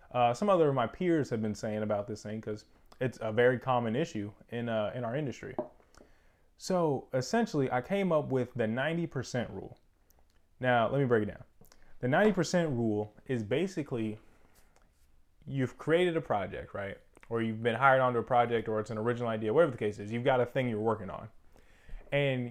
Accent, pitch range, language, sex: American, 110-145 Hz, English, male